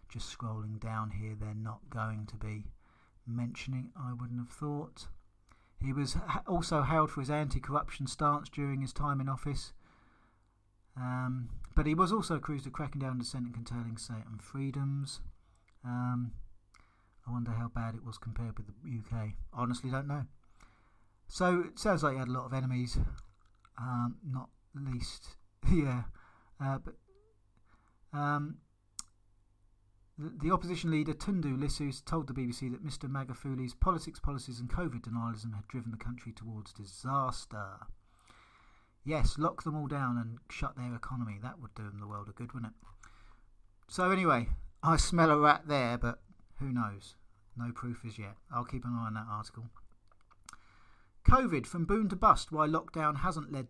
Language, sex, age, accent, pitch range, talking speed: English, male, 40-59, British, 110-140 Hz, 160 wpm